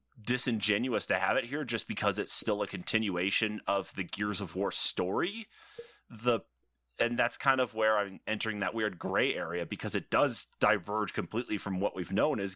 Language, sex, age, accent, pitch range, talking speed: English, male, 30-49, American, 90-105 Hz, 185 wpm